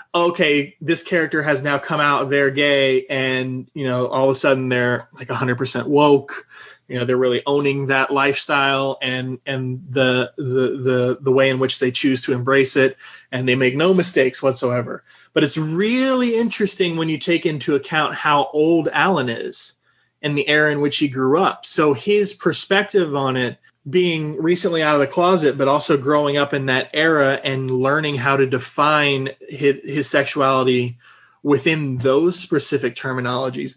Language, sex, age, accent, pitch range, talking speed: English, male, 30-49, American, 130-160 Hz, 175 wpm